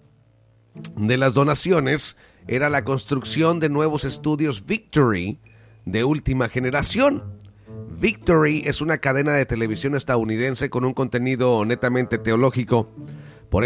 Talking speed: 115 wpm